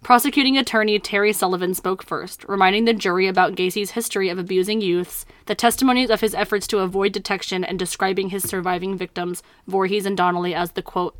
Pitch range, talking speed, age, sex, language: 185-215 Hz, 180 wpm, 20-39, female, English